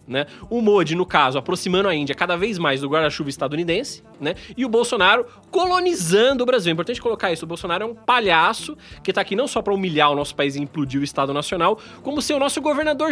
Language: Portuguese